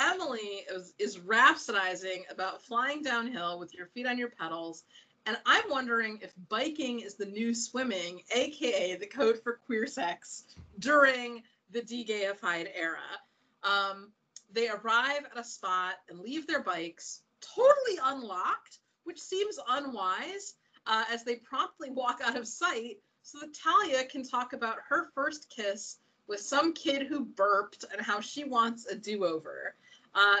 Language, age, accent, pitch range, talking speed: English, 30-49, American, 200-280 Hz, 150 wpm